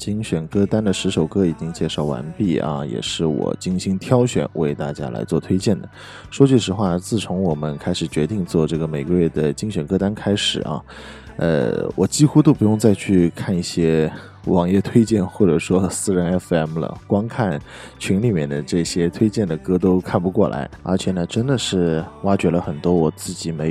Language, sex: Chinese, male